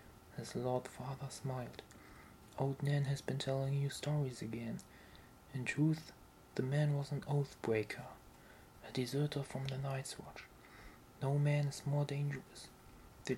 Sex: male